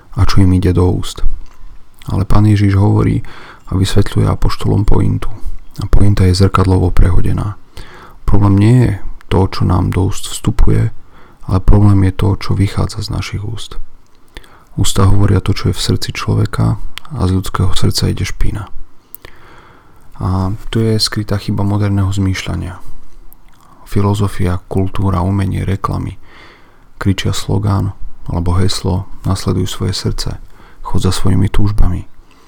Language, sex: Slovak, male